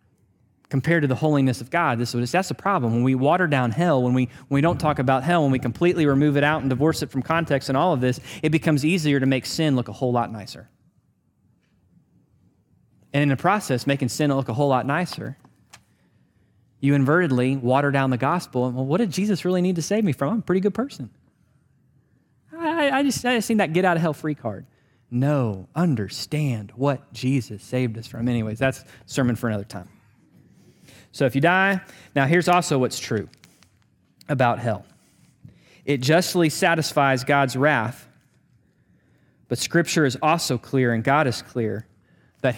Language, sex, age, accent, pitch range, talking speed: English, male, 20-39, American, 125-155 Hz, 190 wpm